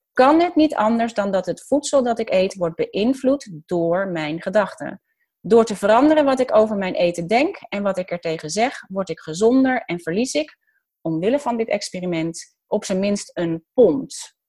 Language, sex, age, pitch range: Dutch, female, 30-49, 180-260 Hz